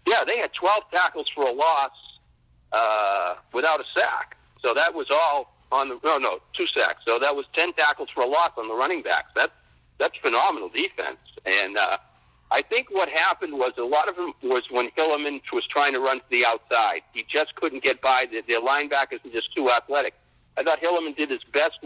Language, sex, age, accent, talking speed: English, male, 60-79, American, 210 wpm